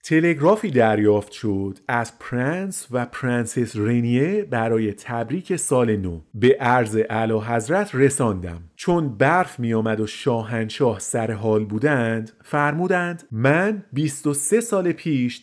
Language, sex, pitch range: Persian, male, 115-165 Hz